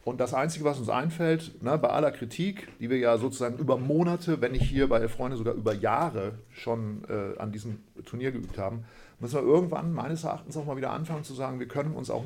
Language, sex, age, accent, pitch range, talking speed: German, male, 50-69, German, 115-145 Hz, 225 wpm